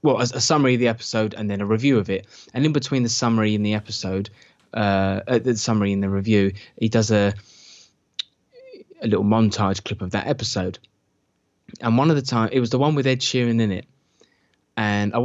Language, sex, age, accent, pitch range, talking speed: English, male, 20-39, British, 100-120 Hz, 205 wpm